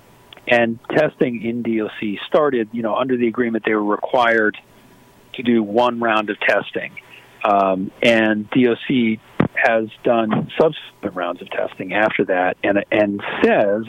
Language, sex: English, male